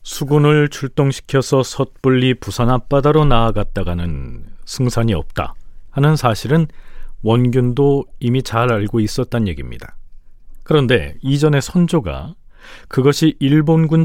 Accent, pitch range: native, 110-150 Hz